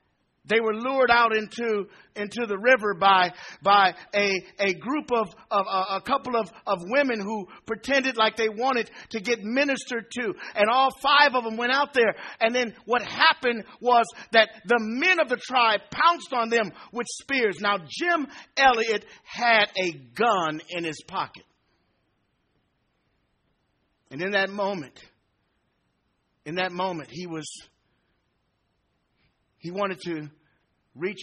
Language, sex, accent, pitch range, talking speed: English, male, American, 175-245 Hz, 145 wpm